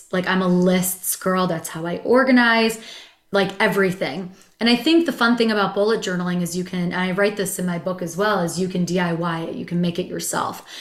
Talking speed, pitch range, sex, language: 235 wpm, 175-200 Hz, female, English